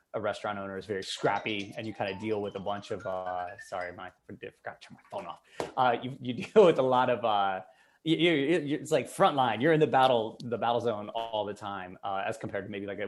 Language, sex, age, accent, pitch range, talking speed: English, male, 20-39, American, 100-130 Hz, 250 wpm